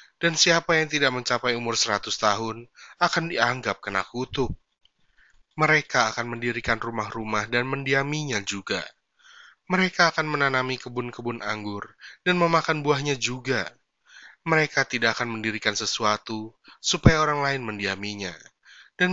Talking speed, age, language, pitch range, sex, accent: 120 wpm, 20-39, Indonesian, 110-155 Hz, male, native